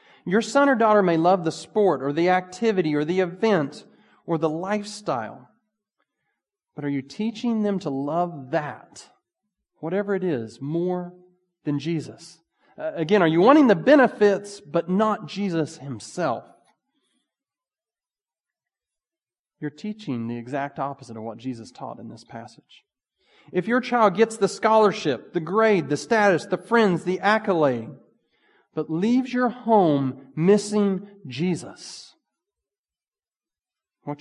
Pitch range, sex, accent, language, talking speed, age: 145-210 Hz, male, American, English, 130 wpm, 40-59